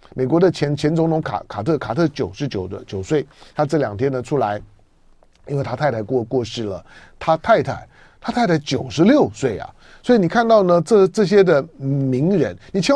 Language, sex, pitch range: Chinese, male, 120-170 Hz